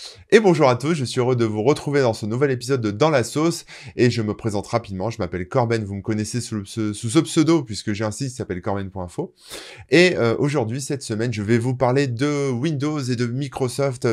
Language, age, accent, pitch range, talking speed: French, 20-39, French, 105-140 Hz, 230 wpm